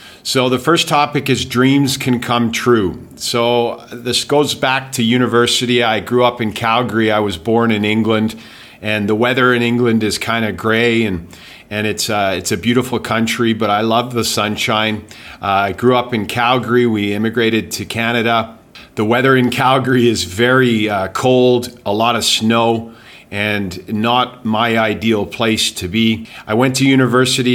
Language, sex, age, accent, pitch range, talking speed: English, male, 40-59, American, 105-120 Hz, 175 wpm